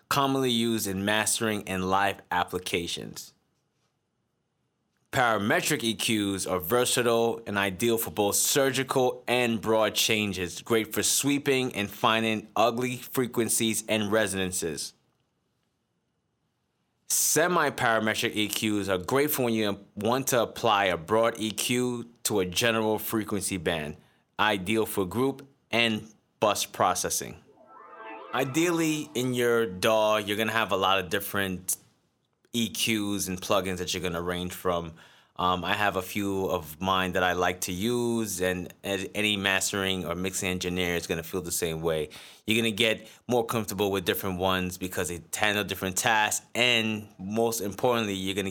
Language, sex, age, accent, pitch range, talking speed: English, male, 20-39, American, 95-115 Hz, 145 wpm